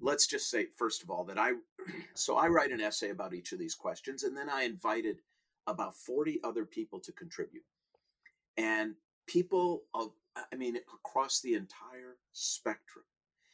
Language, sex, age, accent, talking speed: English, male, 40-59, American, 165 wpm